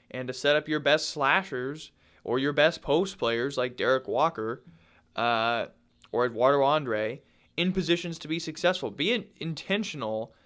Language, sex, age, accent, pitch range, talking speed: English, male, 20-39, American, 120-160 Hz, 150 wpm